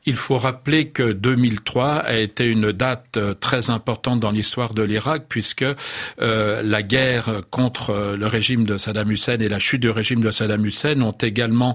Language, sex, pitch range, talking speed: French, male, 110-135 Hz, 180 wpm